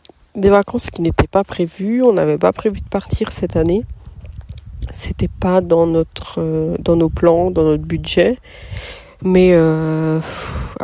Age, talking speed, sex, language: 40-59, 155 wpm, female, French